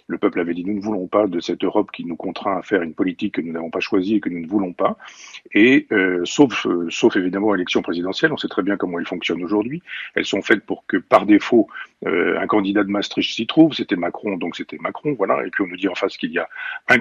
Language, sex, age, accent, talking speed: French, male, 50-69, French, 270 wpm